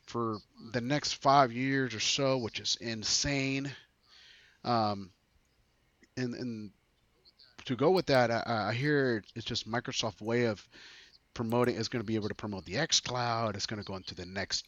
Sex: male